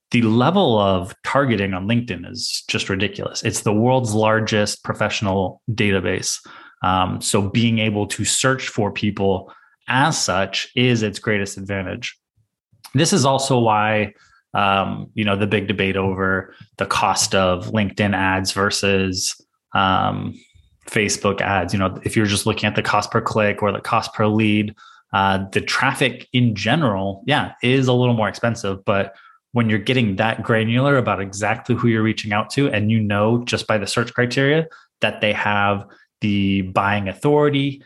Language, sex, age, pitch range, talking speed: English, male, 20-39, 100-115 Hz, 165 wpm